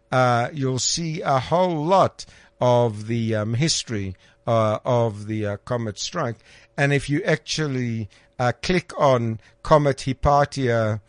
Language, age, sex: English, 60-79, male